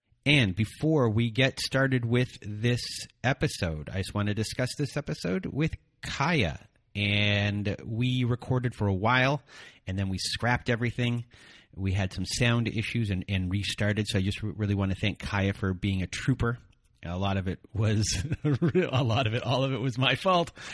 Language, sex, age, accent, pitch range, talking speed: English, male, 30-49, American, 100-120 Hz, 180 wpm